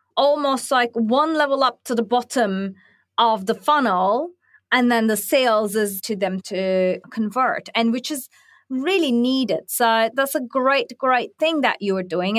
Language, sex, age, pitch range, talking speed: English, female, 30-49, 205-265 Hz, 170 wpm